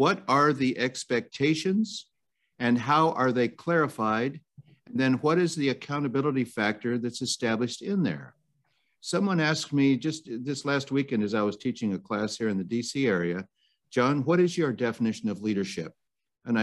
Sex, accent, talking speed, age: male, American, 160 wpm, 60-79